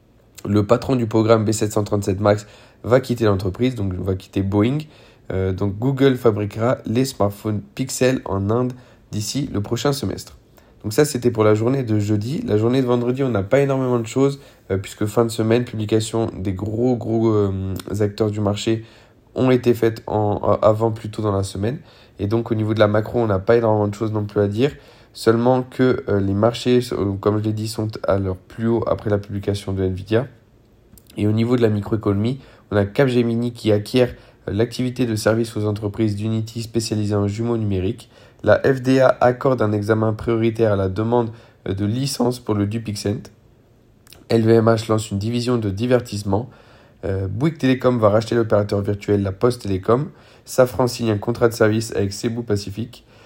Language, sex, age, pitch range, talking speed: French, male, 20-39, 105-120 Hz, 185 wpm